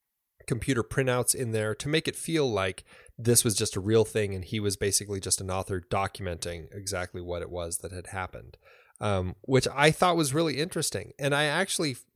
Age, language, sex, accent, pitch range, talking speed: 30-49, English, male, American, 100-130 Hz, 195 wpm